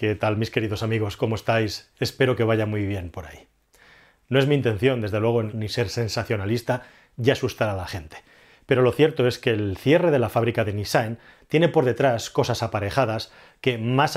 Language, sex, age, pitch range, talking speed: Spanish, male, 30-49, 110-130 Hz, 200 wpm